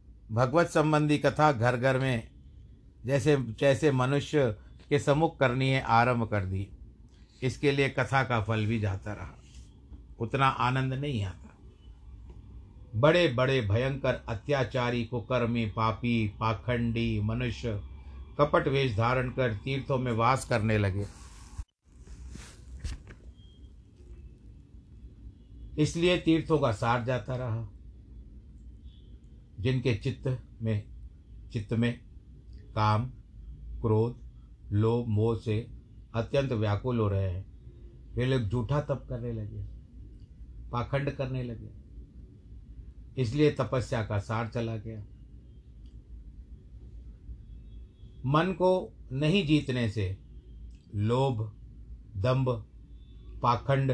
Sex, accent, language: male, native, Hindi